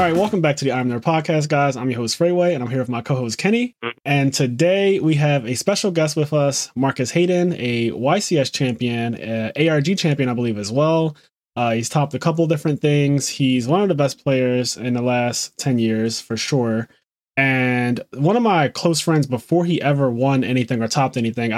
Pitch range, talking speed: 120-155 Hz, 215 wpm